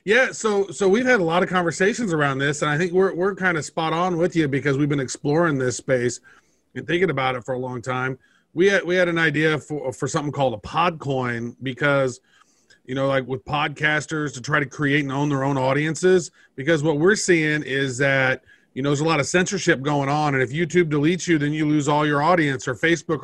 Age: 30-49